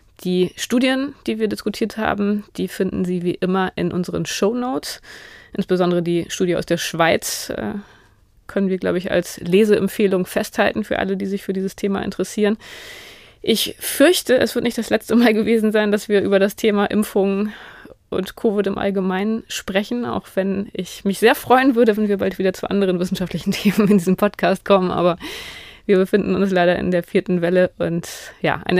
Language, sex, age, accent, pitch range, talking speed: German, female, 20-39, German, 185-220 Hz, 180 wpm